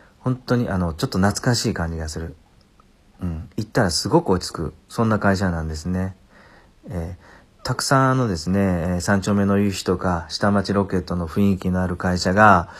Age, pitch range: 40-59, 85-105 Hz